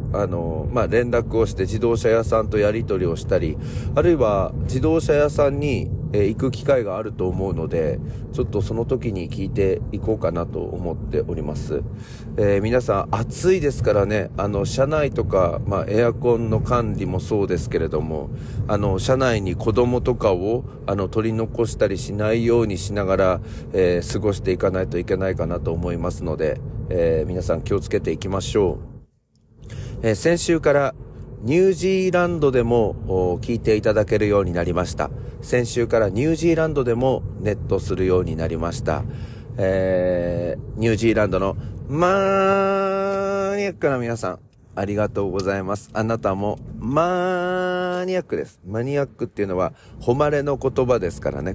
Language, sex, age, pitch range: Japanese, male, 40-59, 95-125 Hz